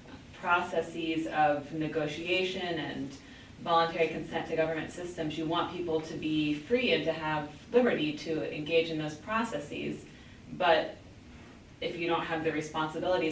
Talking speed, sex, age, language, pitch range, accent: 140 wpm, female, 30-49, English, 155-180 Hz, American